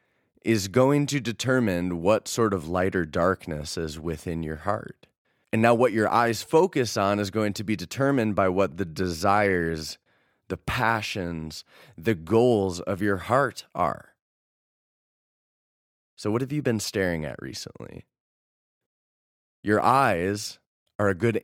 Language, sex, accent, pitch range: English, male, American, 90-120 Hz